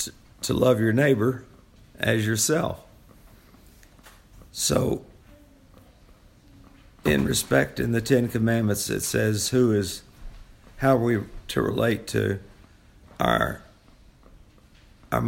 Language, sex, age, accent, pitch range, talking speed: English, male, 50-69, American, 100-125 Hz, 100 wpm